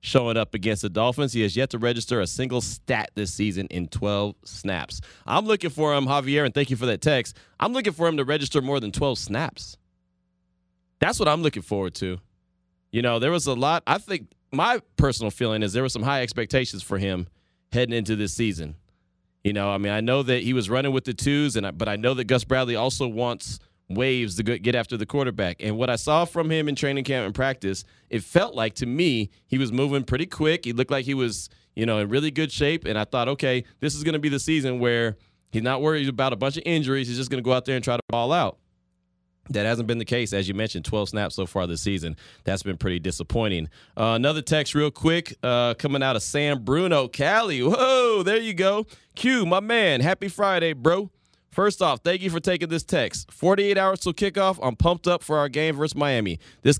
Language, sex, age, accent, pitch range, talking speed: English, male, 30-49, American, 105-150 Hz, 235 wpm